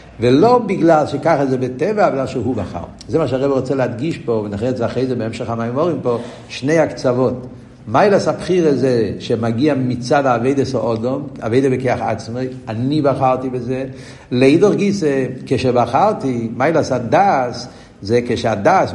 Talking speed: 145 wpm